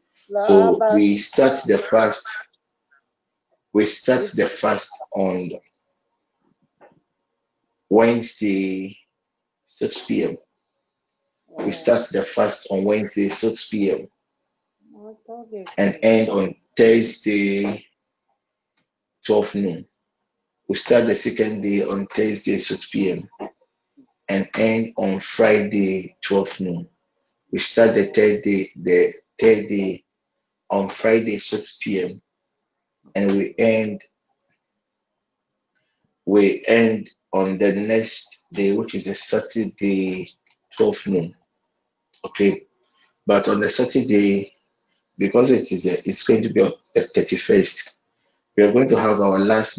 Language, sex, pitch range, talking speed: English, male, 95-110 Hz, 110 wpm